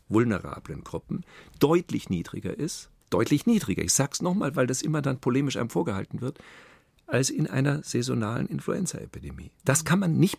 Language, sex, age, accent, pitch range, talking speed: German, male, 50-69, German, 110-155 Hz, 160 wpm